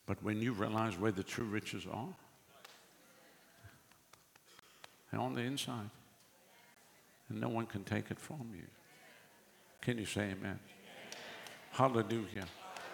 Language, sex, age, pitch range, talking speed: English, male, 60-79, 125-160 Hz, 120 wpm